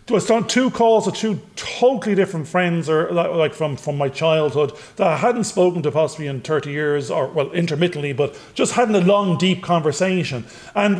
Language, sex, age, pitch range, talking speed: English, male, 40-59, 155-205 Hz, 195 wpm